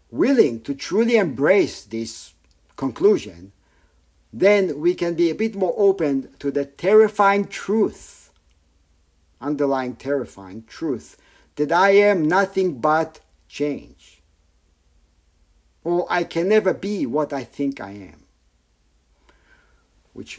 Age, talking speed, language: 50-69, 110 wpm, English